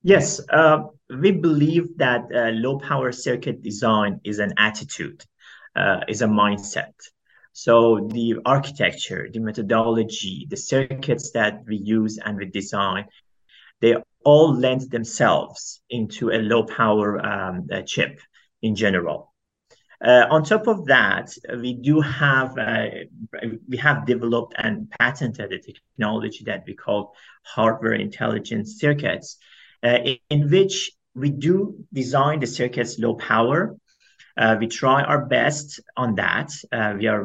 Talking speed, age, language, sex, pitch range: 135 wpm, 30-49, English, male, 110-150 Hz